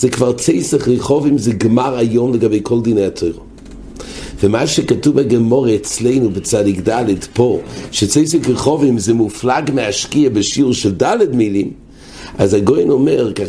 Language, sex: English, male